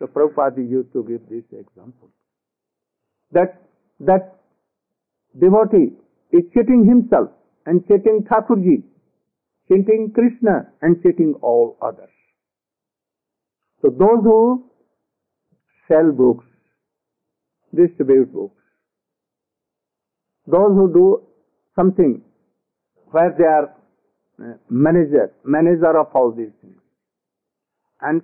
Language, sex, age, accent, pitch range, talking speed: English, male, 50-69, Indian, 165-215 Hz, 95 wpm